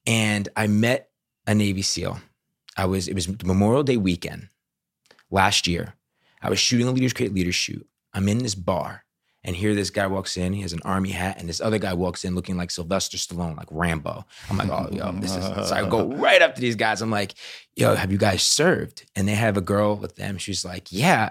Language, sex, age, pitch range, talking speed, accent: English, male, 30-49, 90-115 Hz, 230 wpm, American